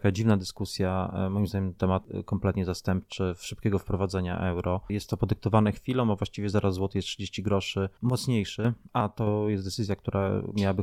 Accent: native